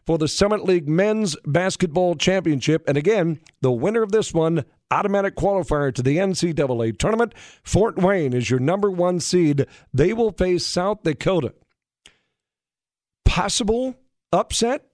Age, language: 50-69, English